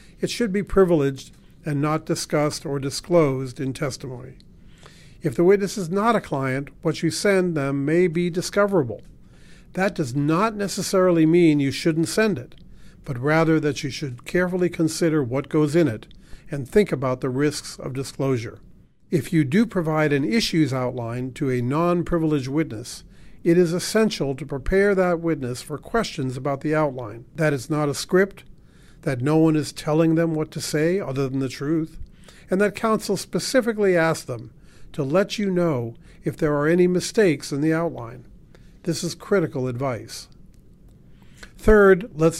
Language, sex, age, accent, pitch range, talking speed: English, male, 50-69, American, 140-180 Hz, 165 wpm